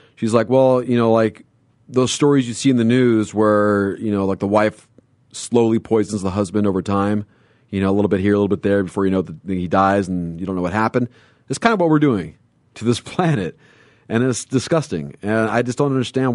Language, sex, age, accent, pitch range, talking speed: English, male, 40-59, American, 95-125 Hz, 235 wpm